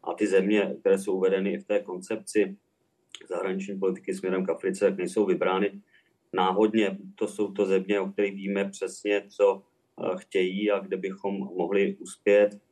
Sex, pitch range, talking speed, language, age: male, 95-100 Hz, 150 wpm, Czech, 30-49